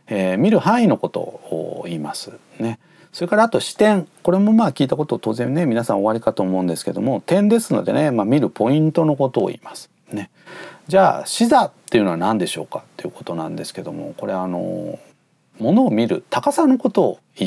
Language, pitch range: Japanese, 115-180 Hz